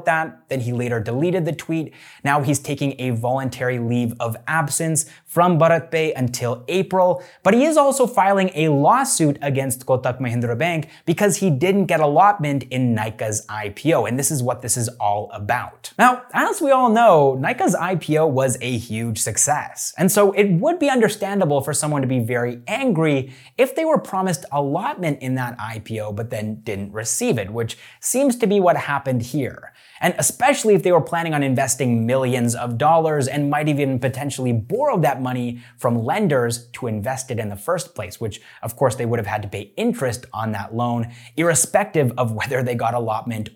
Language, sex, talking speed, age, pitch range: English, male, 185 wpm, 20-39, 120-170 Hz